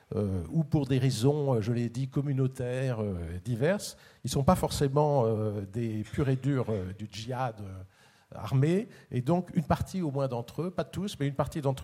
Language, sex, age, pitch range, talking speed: French, male, 50-69, 115-150 Hz, 205 wpm